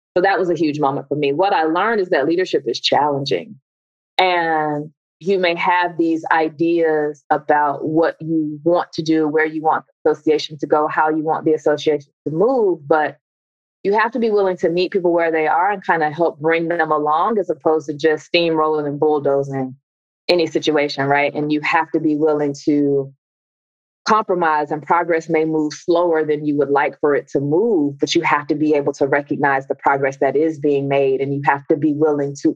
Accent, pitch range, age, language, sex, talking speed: American, 145-165 Hz, 20-39, English, female, 210 wpm